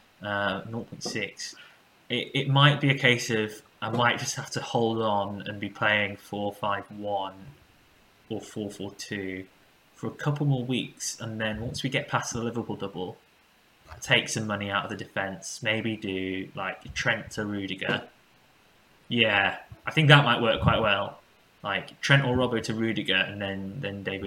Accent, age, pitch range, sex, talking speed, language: British, 10-29, 100-120 Hz, male, 170 wpm, English